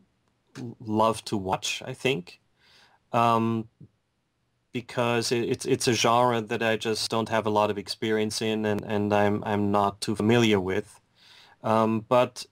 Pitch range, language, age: 105-115 Hz, English, 30-49